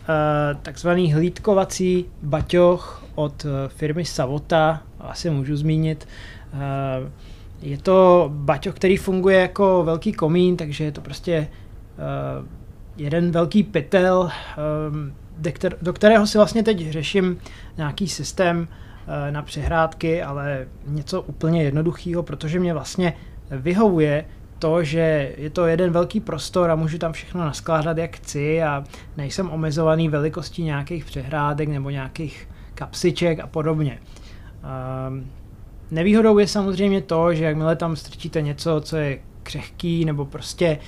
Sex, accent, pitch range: male, native, 145-170 Hz